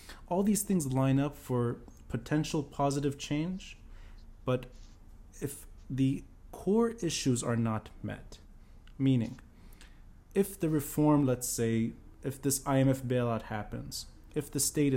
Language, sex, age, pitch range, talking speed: English, male, 20-39, 110-140 Hz, 125 wpm